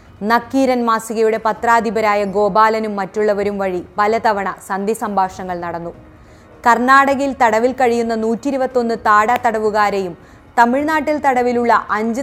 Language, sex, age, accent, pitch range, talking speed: Malayalam, female, 20-39, native, 200-255 Hz, 100 wpm